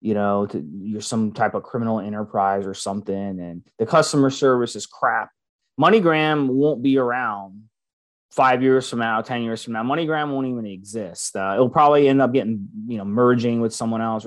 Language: English